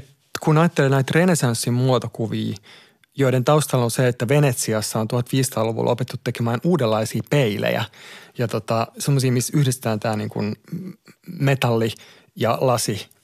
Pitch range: 115-140 Hz